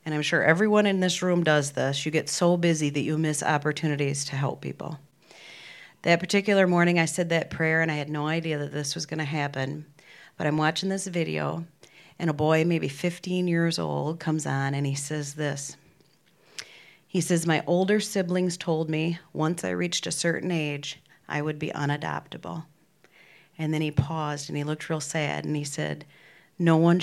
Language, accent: English, American